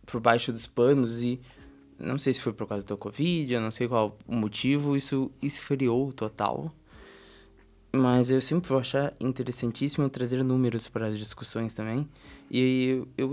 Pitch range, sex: 120-150 Hz, male